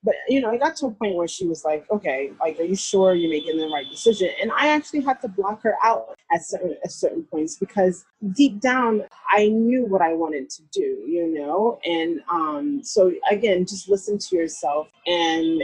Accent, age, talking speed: American, 30-49, 215 wpm